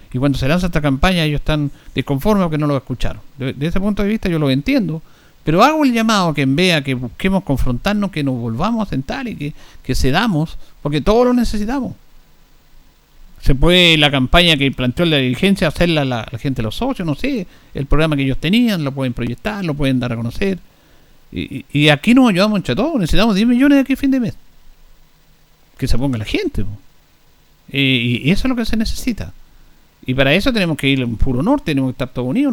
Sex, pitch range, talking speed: male, 135-195 Hz, 220 wpm